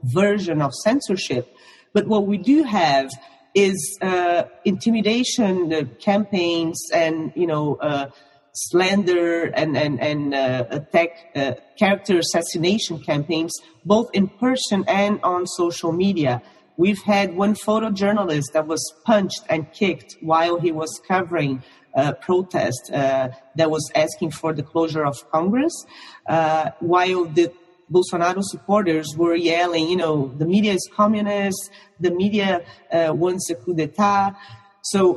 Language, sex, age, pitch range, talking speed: English, female, 40-59, 160-200 Hz, 135 wpm